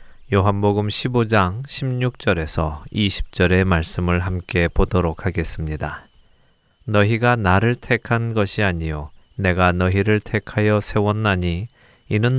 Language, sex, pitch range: Korean, male, 90-110 Hz